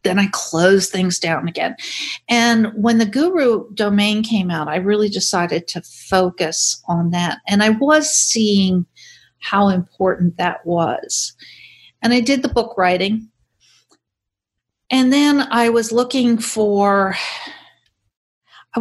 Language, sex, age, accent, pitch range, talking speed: English, female, 50-69, American, 170-225 Hz, 130 wpm